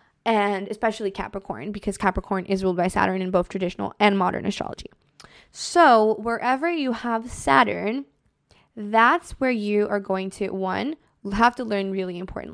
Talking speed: 155 wpm